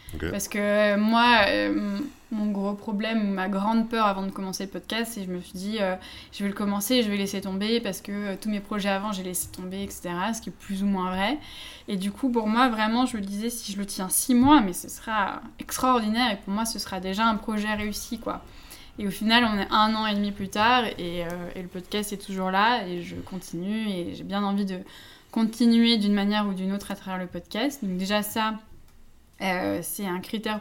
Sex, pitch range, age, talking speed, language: female, 195-230 Hz, 20-39, 240 wpm, French